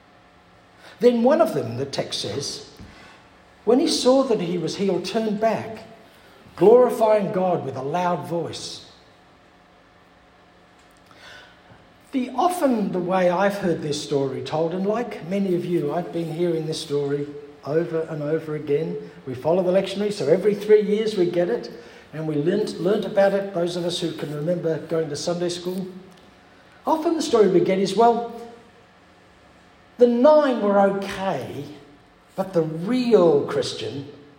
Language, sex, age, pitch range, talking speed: English, male, 60-79, 160-220 Hz, 150 wpm